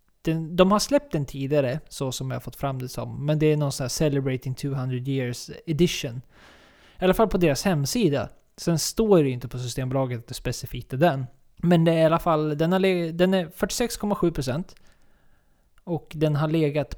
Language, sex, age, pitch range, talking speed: Swedish, male, 20-39, 140-180 Hz, 200 wpm